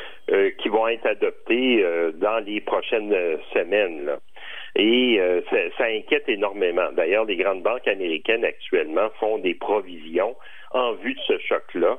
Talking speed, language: 150 wpm, French